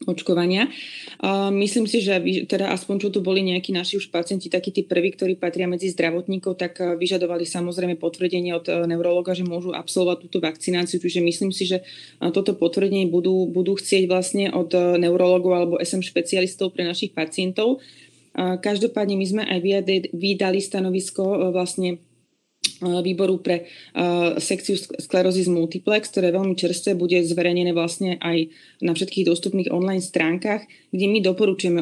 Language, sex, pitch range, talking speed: Slovak, female, 175-195 Hz, 150 wpm